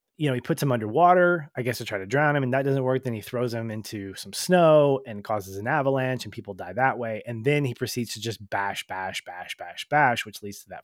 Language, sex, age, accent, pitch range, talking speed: English, male, 30-49, American, 110-140 Hz, 265 wpm